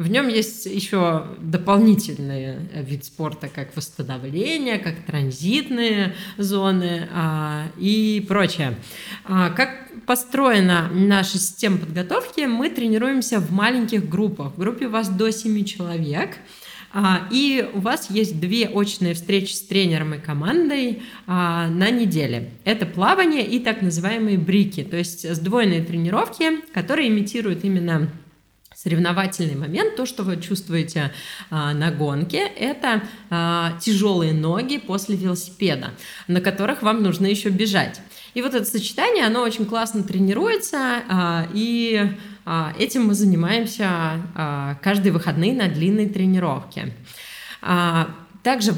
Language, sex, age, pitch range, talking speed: Russian, female, 20-39, 170-220 Hz, 130 wpm